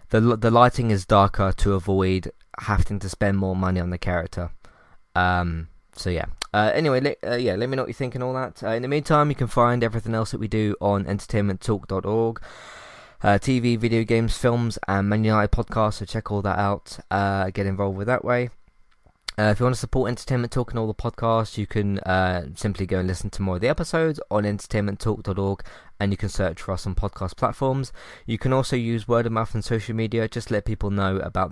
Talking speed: 220 wpm